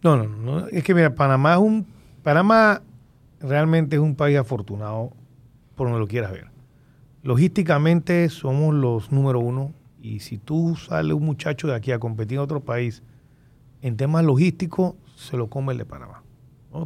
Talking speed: 175 wpm